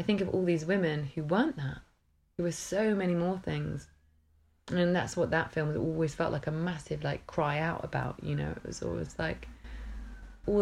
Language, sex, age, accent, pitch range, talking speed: English, female, 20-39, British, 135-180 Hz, 205 wpm